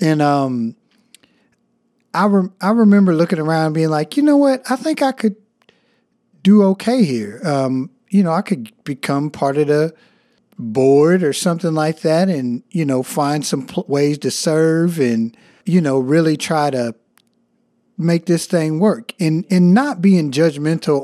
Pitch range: 135-190 Hz